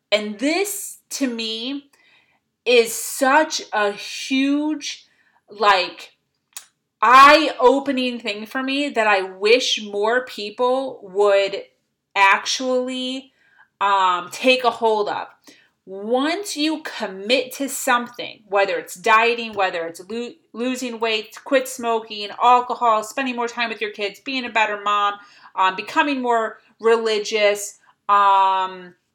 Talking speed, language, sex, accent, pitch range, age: 115 wpm, English, female, American, 220-300 Hz, 30-49